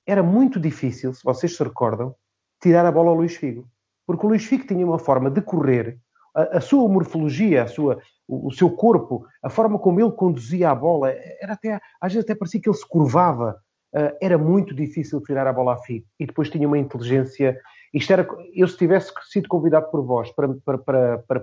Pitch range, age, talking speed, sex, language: 135-190 Hz, 30-49, 215 wpm, male, Portuguese